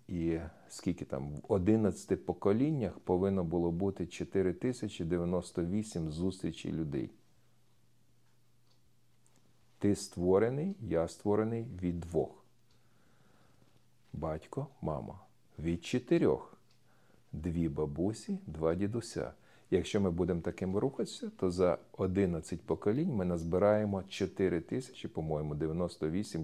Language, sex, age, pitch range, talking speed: Ukrainian, male, 50-69, 85-110 Hz, 95 wpm